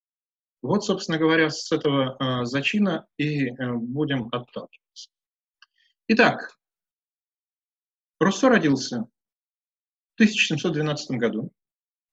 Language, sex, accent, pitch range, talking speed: Russian, male, native, 130-185 Hz, 75 wpm